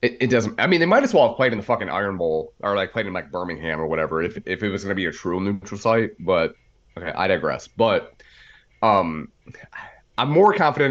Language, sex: English, male